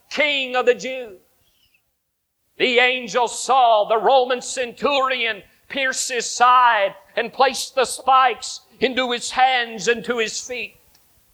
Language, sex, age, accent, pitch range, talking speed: English, male, 50-69, American, 230-270 Hz, 125 wpm